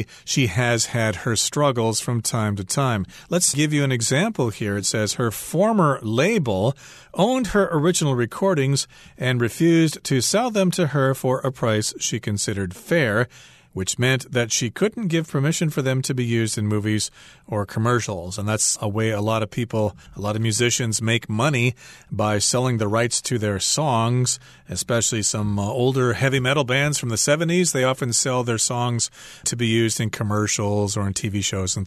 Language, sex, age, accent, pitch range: Chinese, male, 40-59, American, 110-145 Hz